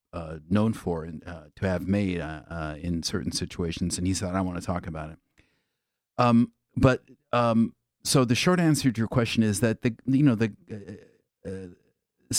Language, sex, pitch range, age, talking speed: English, male, 95-115 Hz, 50-69, 200 wpm